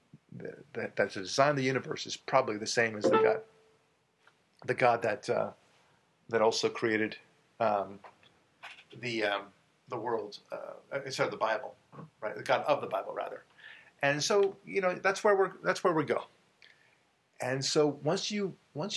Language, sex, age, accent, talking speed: English, male, 50-69, American, 170 wpm